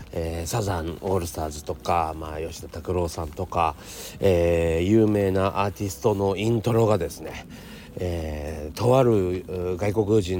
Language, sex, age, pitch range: Japanese, male, 40-59, 85-120 Hz